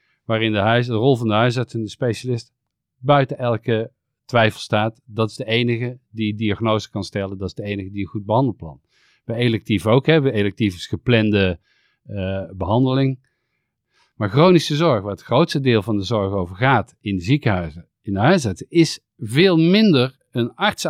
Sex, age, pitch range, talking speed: male, 50-69, 105-135 Hz, 180 wpm